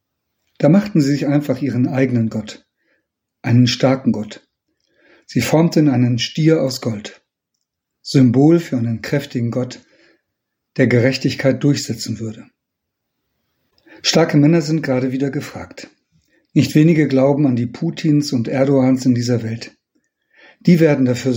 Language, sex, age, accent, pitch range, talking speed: German, male, 50-69, German, 125-150 Hz, 130 wpm